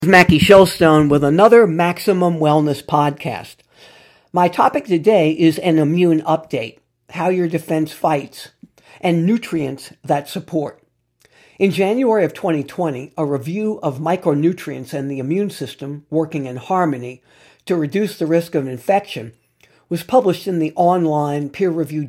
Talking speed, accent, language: 135 wpm, American, English